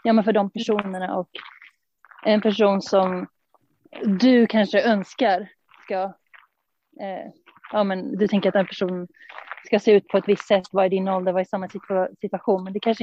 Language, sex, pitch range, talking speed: Swedish, female, 190-220 Hz, 180 wpm